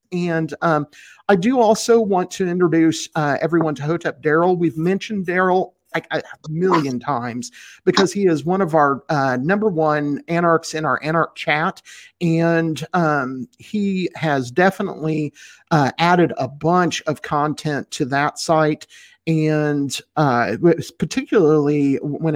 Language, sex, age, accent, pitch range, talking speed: English, male, 50-69, American, 145-180 Hz, 135 wpm